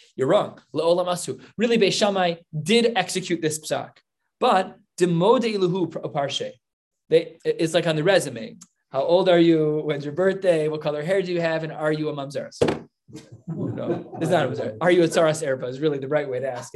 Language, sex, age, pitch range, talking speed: English, male, 20-39, 160-210 Hz, 195 wpm